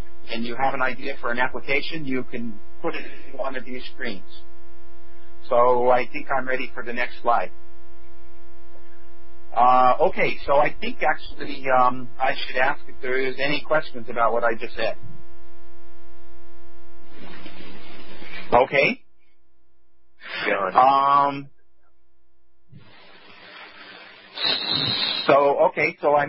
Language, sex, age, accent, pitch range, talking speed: English, male, 40-59, American, 120-160 Hz, 120 wpm